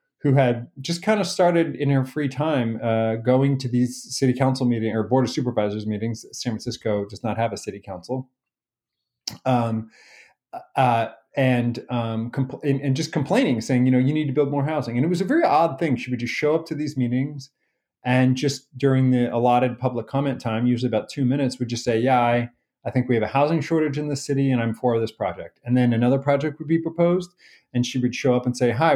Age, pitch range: 30-49, 120-145 Hz